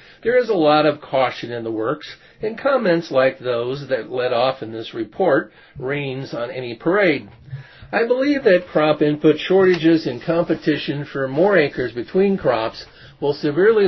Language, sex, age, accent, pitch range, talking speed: English, male, 50-69, American, 125-175 Hz, 170 wpm